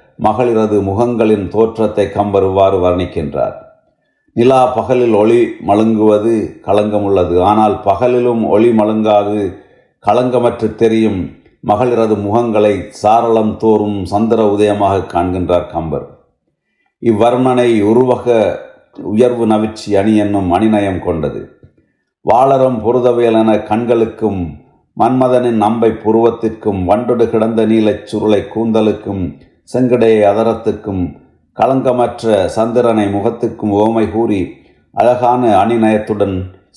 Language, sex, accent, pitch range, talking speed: Tamil, male, native, 100-115 Hz, 85 wpm